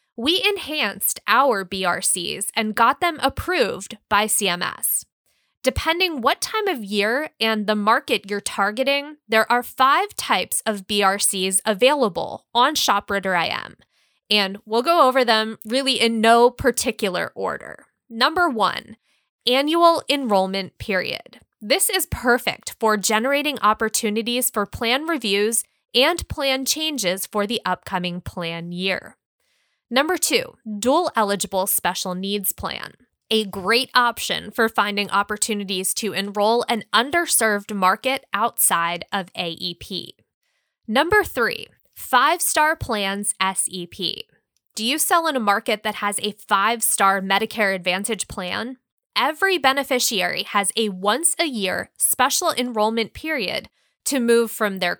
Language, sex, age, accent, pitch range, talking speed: English, female, 20-39, American, 200-265 Hz, 125 wpm